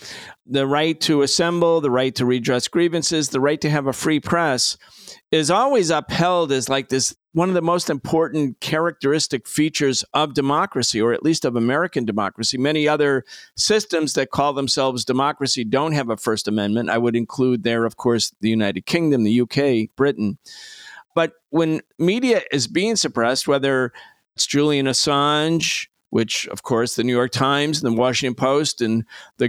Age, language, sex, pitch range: 50-69, English, male, 125-155 Hz